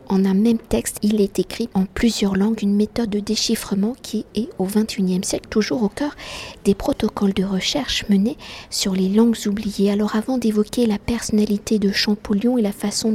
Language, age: French, 50-69